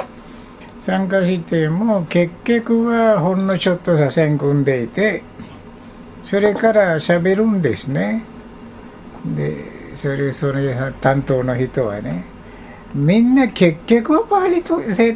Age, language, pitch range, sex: 60-79, Japanese, 125-175 Hz, male